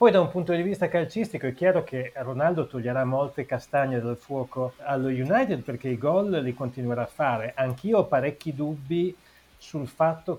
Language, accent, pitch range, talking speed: Italian, native, 130-165 Hz, 180 wpm